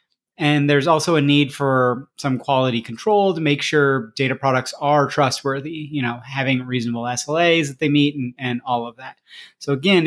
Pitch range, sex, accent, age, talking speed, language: 130-155 Hz, male, American, 30-49, 185 wpm, English